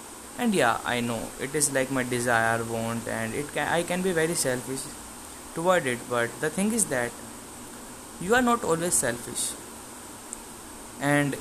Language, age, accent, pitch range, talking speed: English, 20-39, Indian, 130-180 Hz, 165 wpm